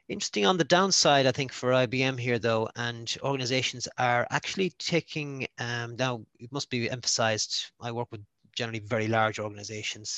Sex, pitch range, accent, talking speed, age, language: male, 110-130 Hz, Irish, 165 wpm, 30-49, English